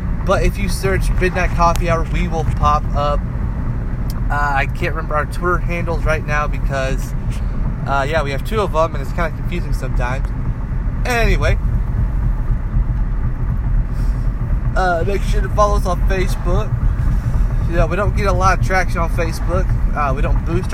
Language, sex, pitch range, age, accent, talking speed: English, male, 125-170 Hz, 20-39, American, 165 wpm